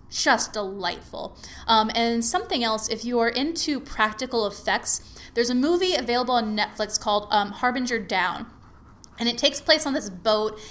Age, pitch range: 20-39, 210-245 Hz